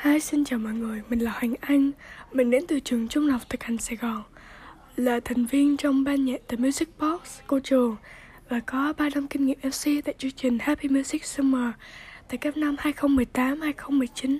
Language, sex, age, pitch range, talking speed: Vietnamese, female, 10-29, 245-295 Hz, 195 wpm